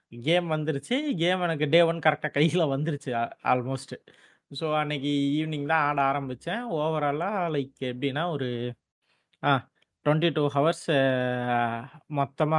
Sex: male